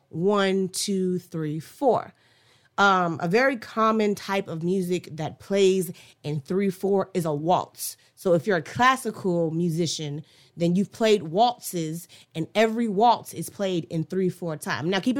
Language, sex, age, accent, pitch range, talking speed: English, female, 30-49, American, 170-240 Hz, 160 wpm